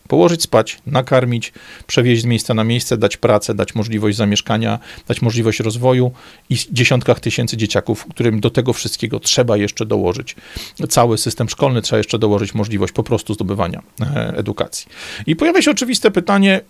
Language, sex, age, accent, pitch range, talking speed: Polish, male, 40-59, native, 115-140 Hz, 155 wpm